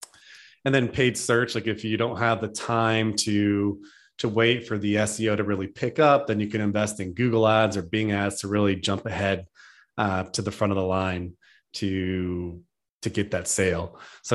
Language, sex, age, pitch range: English, male, 30-49, 100-115 Hz